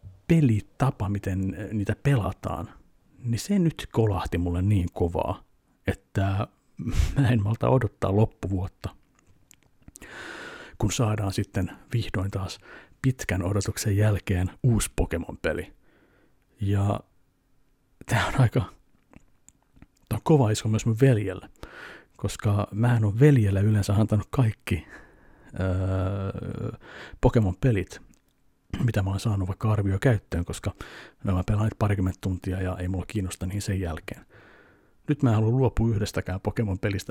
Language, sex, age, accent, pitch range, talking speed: Finnish, male, 50-69, native, 95-115 Hz, 120 wpm